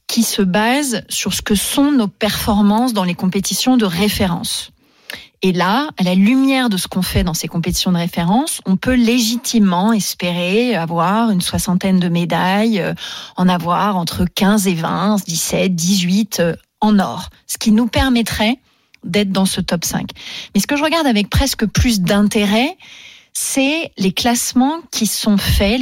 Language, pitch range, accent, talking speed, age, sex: French, 180-235 Hz, French, 170 wpm, 30-49, female